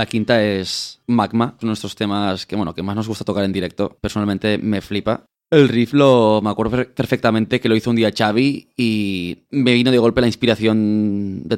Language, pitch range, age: Spanish, 100-120 Hz, 20-39